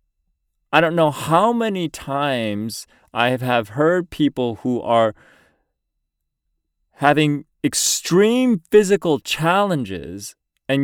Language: English